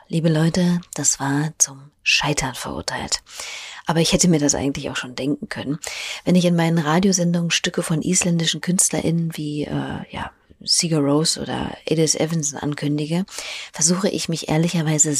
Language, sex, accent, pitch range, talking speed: German, female, German, 150-195 Hz, 155 wpm